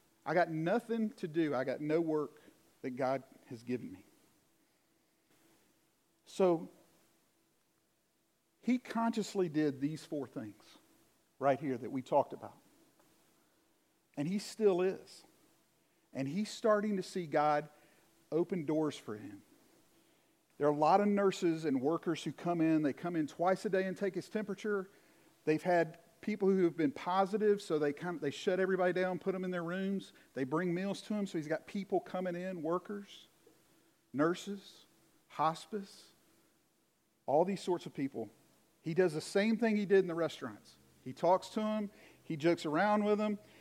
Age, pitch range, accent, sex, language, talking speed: 50-69, 155-200 Hz, American, male, English, 165 wpm